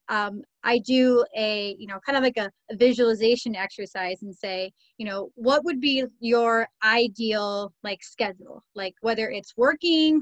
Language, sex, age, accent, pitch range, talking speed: English, female, 30-49, American, 205-250 Hz, 165 wpm